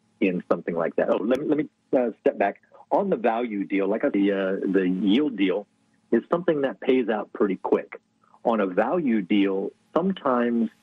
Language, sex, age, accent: English, male, 50-69, American